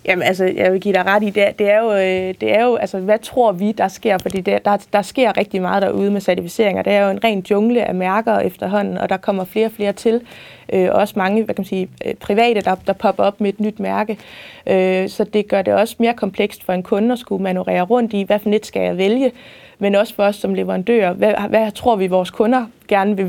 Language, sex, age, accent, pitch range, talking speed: Danish, female, 20-39, native, 190-220 Hz, 255 wpm